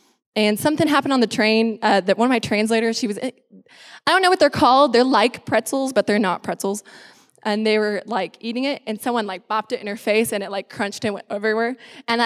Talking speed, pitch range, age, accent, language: 240 wpm, 210-250 Hz, 20-39, American, English